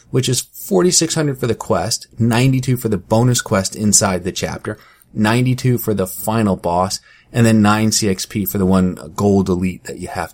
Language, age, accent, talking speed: English, 30-49, American, 180 wpm